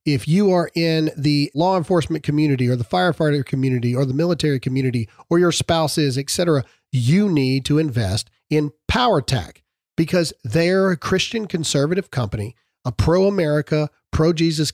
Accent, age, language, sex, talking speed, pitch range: American, 40-59, English, male, 145 wpm, 130-175 Hz